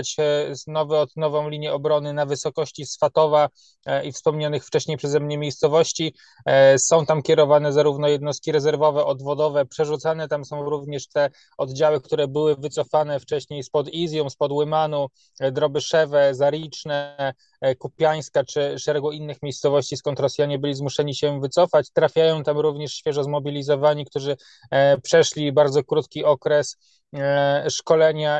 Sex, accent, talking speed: male, native, 125 wpm